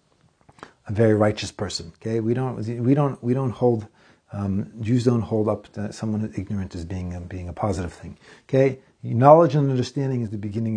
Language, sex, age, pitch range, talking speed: English, male, 40-59, 110-145 Hz, 190 wpm